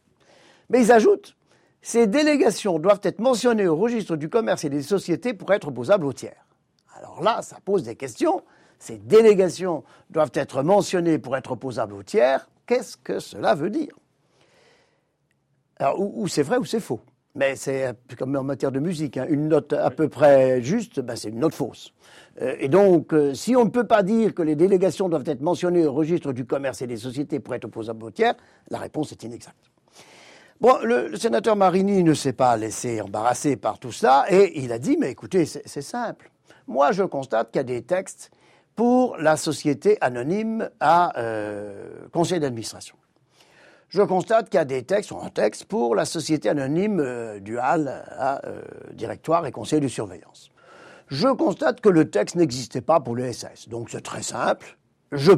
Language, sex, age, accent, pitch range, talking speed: French, male, 60-79, French, 130-195 Hz, 190 wpm